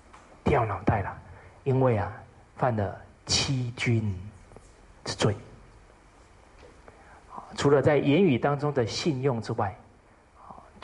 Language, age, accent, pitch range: Chinese, 40-59, native, 85-120 Hz